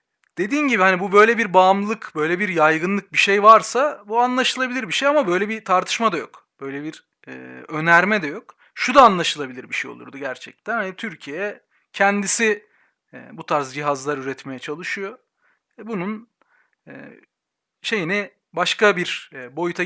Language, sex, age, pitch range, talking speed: Turkish, male, 40-59, 180-250 Hz, 160 wpm